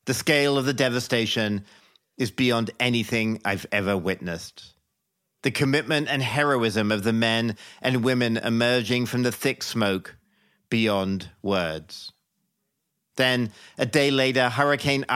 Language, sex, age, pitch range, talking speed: English, male, 40-59, 100-130 Hz, 125 wpm